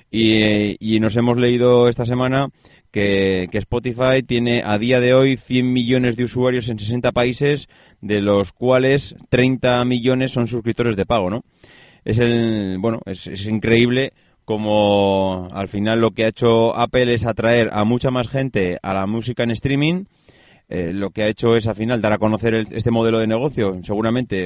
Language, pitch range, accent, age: Spanish, 105-130 Hz, Spanish, 30-49